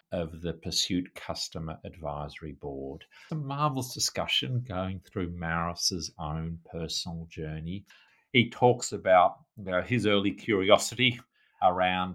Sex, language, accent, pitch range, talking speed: male, English, Australian, 90-110 Hz, 125 wpm